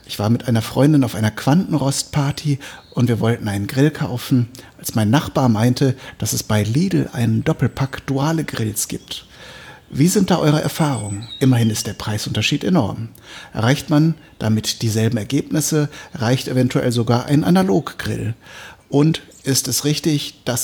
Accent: German